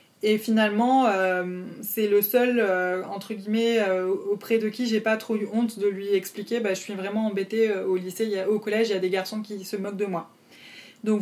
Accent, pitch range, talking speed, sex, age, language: French, 200-235 Hz, 235 wpm, female, 20-39, French